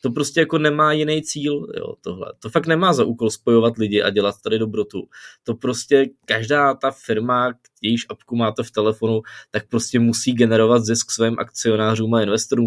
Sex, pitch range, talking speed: male, 110-135 Hz, 180 wpm